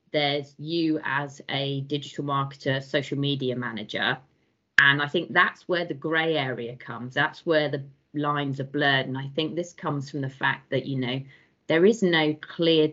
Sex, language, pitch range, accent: female, English, 130-155 Hz, British